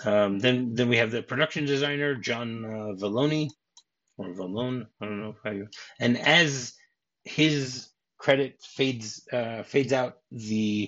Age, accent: 30-49, American